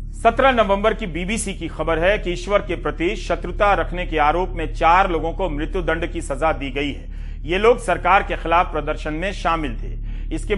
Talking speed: 200 wpm